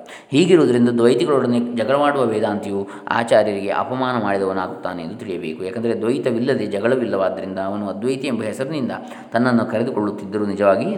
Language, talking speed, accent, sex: Kannada, 110 wpm, native, male